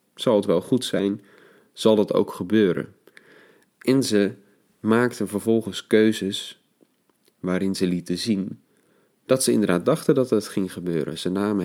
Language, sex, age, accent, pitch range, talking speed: Dutch, male, 30-49, Dutch, 95-115 Hz, 145 wpm